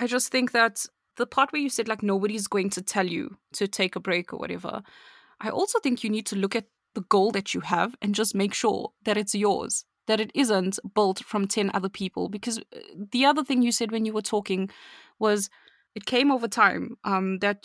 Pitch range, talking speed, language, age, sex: 200-265 Hz, 225 wpm, English, 20-39, female